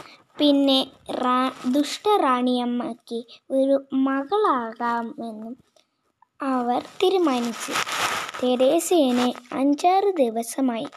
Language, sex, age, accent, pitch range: Malayalam, female, 20-39, native, 250-310 Hz